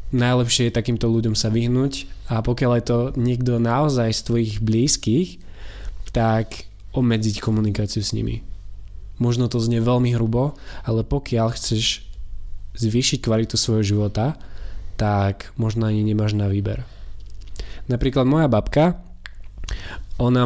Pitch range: 100-120 Hz